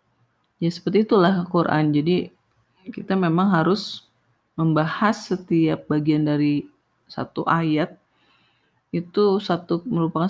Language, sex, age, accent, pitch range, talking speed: Indonesian, female, 30-49, native, 150-190 Hz, 100 wpm